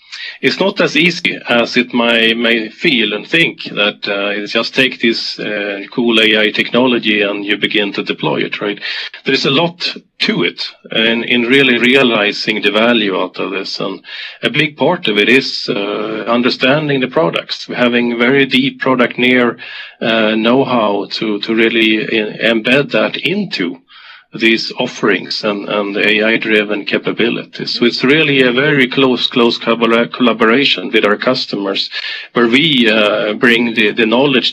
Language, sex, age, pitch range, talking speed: English, male, 40-59, 105-125 Hz, 155 wpm